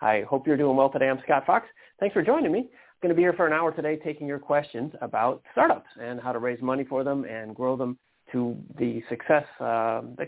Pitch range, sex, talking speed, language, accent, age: 115-145 Hz, male, 245 wpm, English, American, 40-59